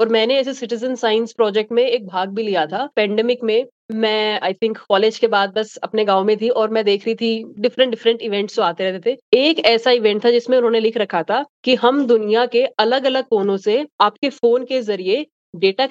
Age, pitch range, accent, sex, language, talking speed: 20-39, 215-250 Hz, native, female, Hindi, 220 wpm